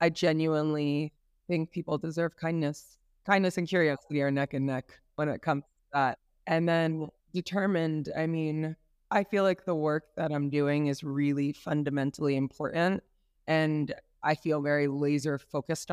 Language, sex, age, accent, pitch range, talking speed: English, female, 20-39, American, 145-160 Hz, 155 wpm